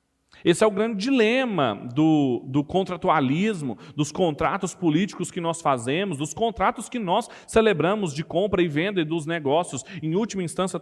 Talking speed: 160 wpm